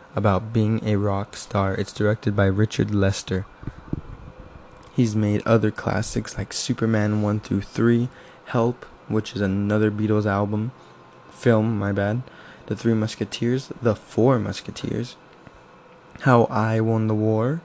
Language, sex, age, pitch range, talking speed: English, male, 20-39, 105-120 Hz, 135 wpm